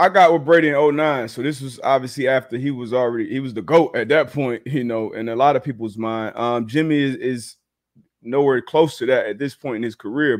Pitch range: 130-165 Hz